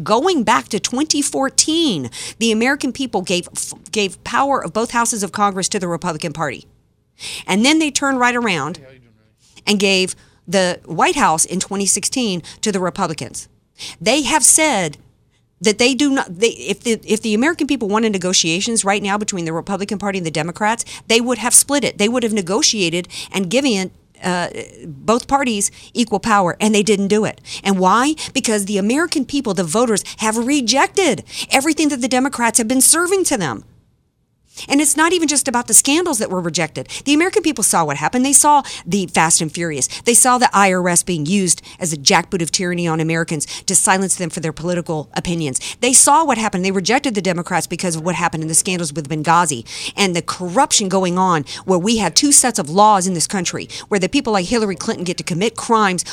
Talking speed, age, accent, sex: 200 wpm, 50-69, American, female